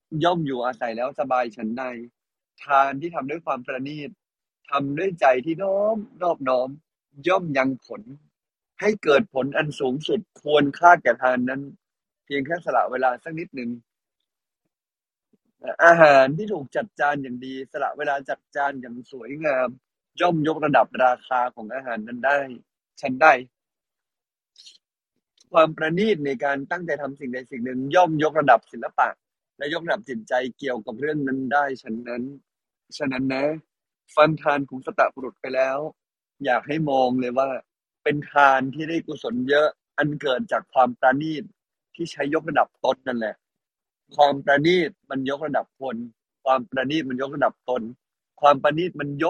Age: 20-39